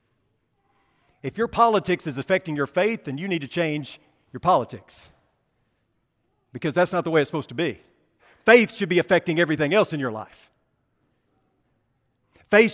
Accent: American